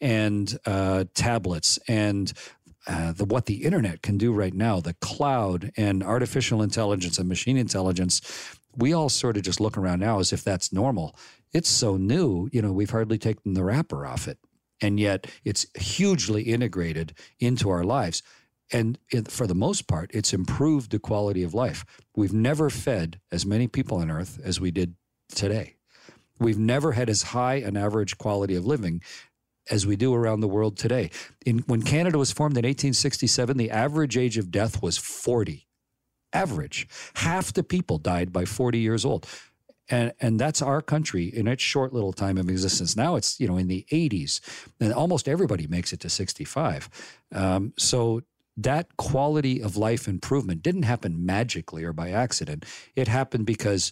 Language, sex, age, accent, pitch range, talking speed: English, male, 50-69, American, 95-125 Hz, 175 wpm